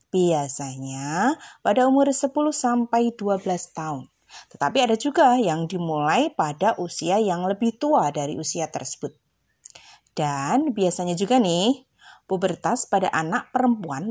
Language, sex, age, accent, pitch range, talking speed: Indonesian, female, 20-39, native, 175-260 Hz, 120 wpm